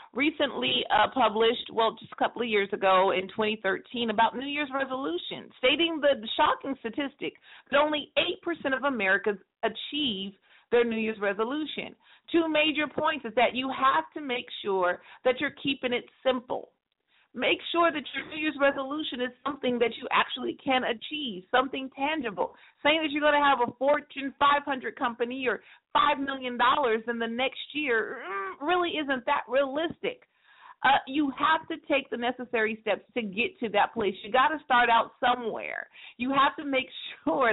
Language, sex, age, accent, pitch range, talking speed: English, female, 40-59, American, 240-295 Hz, 170 wpm